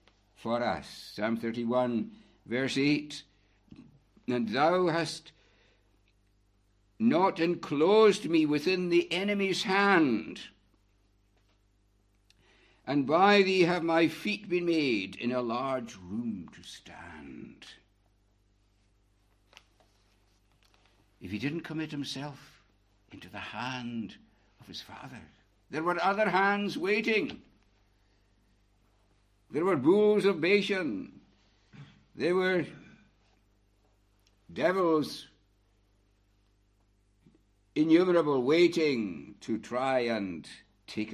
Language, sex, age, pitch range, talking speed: English, male, 60-79, 100-165 Hz, 90 wpm